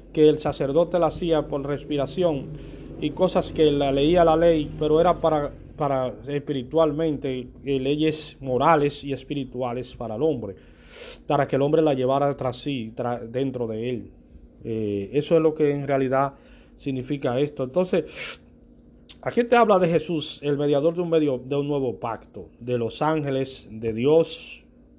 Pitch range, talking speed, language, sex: 125-150 Hz, 165 wpm, Spanish, male